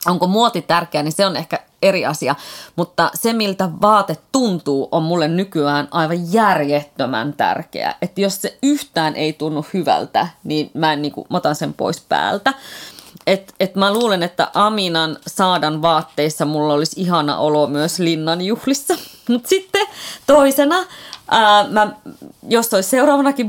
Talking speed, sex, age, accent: 145 wpm, female, 30-49, native